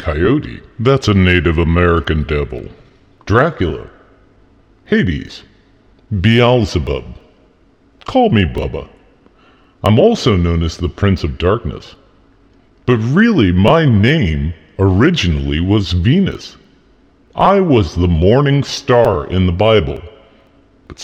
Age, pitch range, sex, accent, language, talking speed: 50-69, 85-135 Hz, female, American, English, 105 wpm